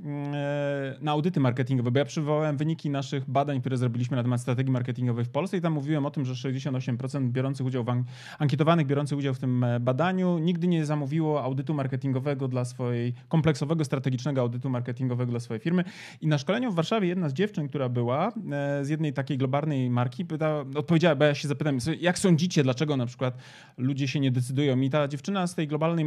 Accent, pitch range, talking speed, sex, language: native, 135-165 Hz, 195 wpm, male, Polish